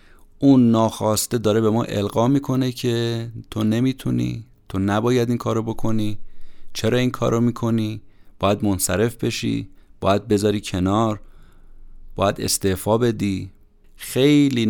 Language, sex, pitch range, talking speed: Persian, male, 95-120 Hz, 125 wpm